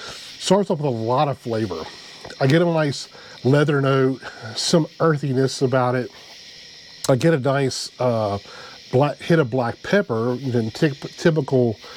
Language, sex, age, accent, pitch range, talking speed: English, male, 40-59, American, 125-155 Hz, 150 wpm